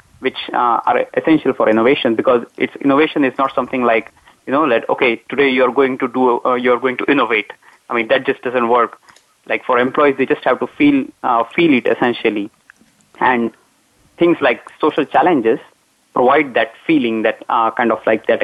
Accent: Indian